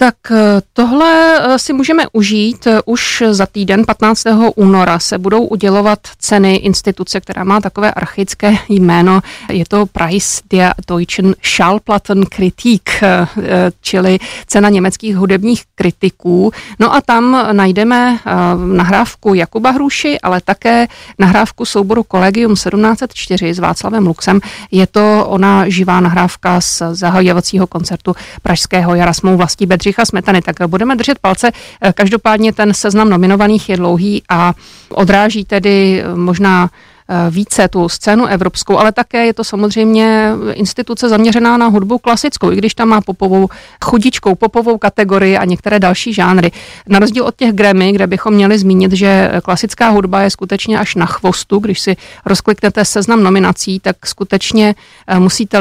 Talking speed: 135 wpm